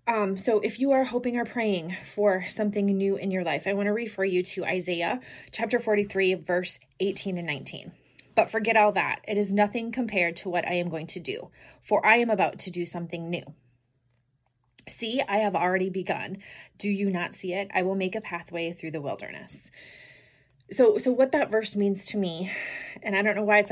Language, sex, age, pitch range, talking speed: English, female, 30-49, 165-205 Hz, 205 wpm